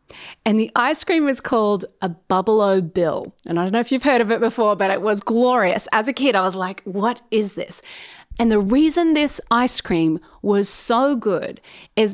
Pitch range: 210-310 Hz